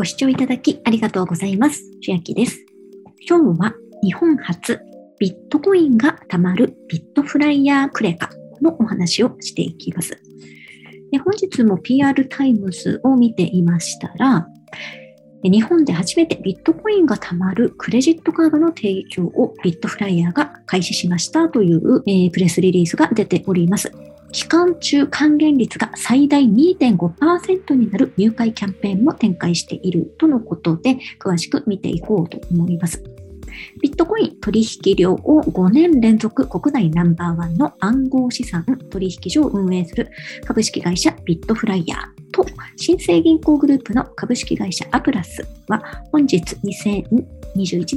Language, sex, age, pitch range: Japanese, male, 40-59, 180-285 Hz